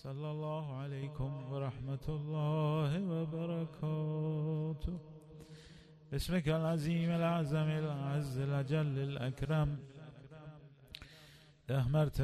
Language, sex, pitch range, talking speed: Persian, male, 100-140 Hz, 65 wpm